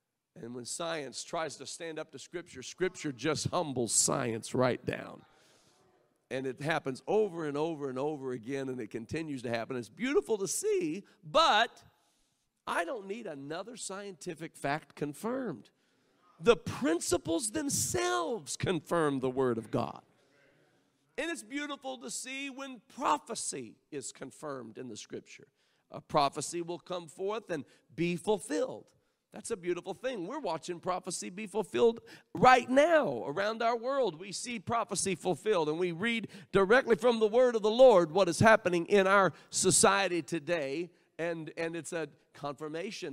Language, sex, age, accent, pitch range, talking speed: English, male, 50-69, American, 150-230 Hz, 150 wpm